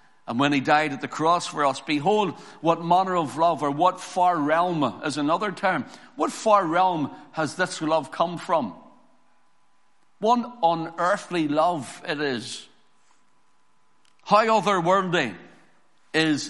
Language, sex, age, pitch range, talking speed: English, male, 60-79, 145-185 Hz, 135 wpm